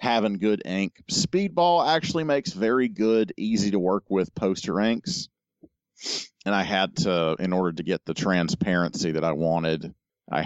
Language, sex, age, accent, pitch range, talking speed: English, male, 40-59, American, 80-95 Hz, 145 wpm